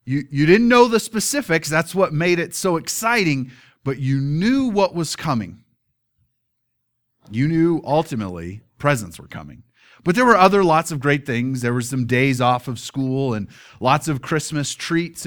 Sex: male